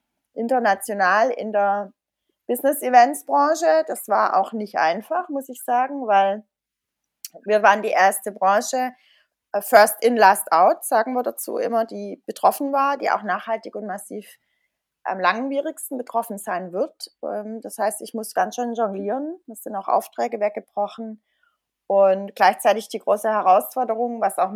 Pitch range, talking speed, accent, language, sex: 200-275 Hz, 140 wpm, German, German, female